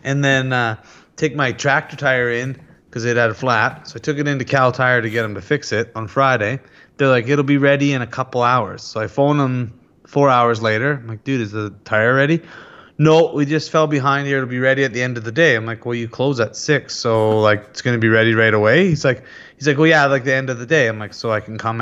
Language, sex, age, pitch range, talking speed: English, male, 30-49, 115-145 Hz, 280 wpm